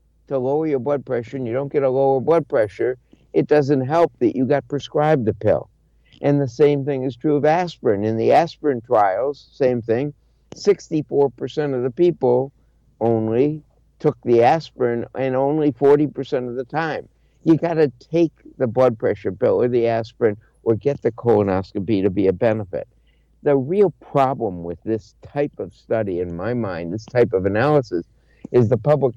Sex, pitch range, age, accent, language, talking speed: male, 115-150 Hz, 60-79, American, English, 175 wpm